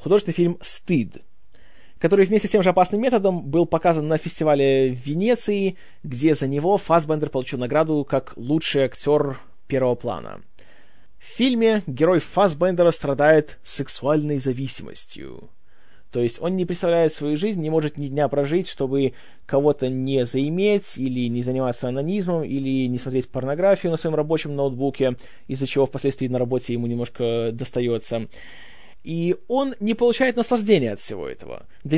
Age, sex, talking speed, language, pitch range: 20-39, male, 150 wpm, Russian, 130-170 Hz